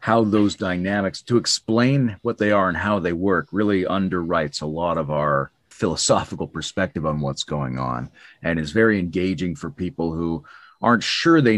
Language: English